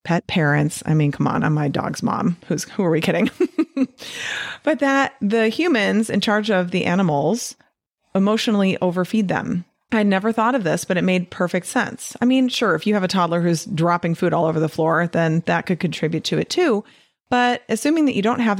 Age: 30-49